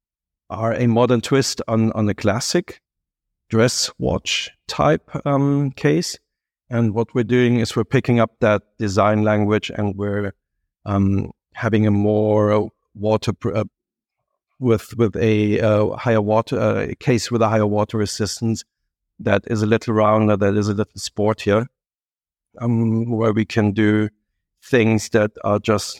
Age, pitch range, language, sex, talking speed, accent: 50-69, 100-115 Hz, English, male, 150 wpm, German